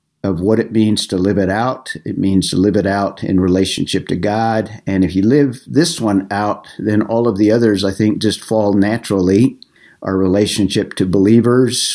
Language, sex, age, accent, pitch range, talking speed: English, male, 50-69, American, 95-115 Hz, 195 wpm